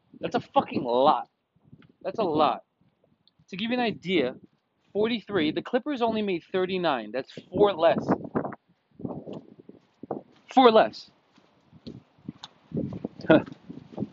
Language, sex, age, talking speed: English, male, 30-49, 100 wpm